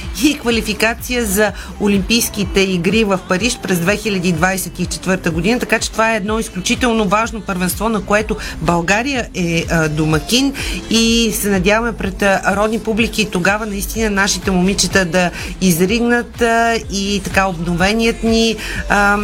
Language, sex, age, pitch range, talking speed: Bulgarian, female, 40-59, 185-225 Hz, 135 wpm